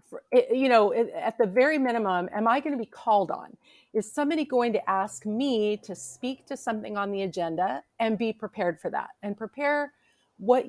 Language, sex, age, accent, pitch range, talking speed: English, female, 40-59, American, 205-250 Hz, 190 wpm